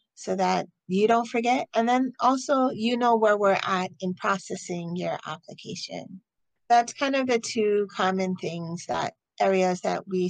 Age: 40-59